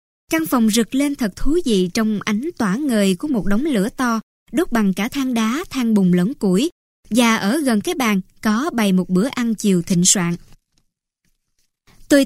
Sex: male